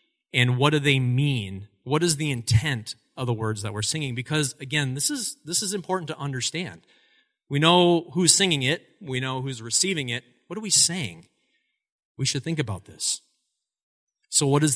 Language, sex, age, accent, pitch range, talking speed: English, male, 30-49, American, 120-160 Hz, 185 wpm